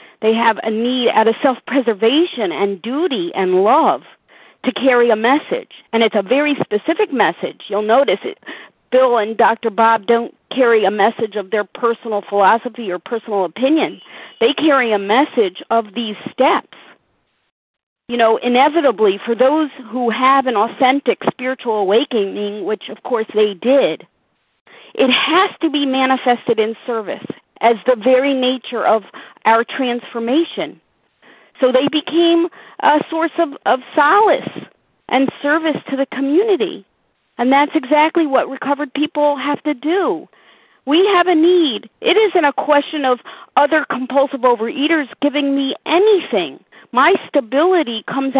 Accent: American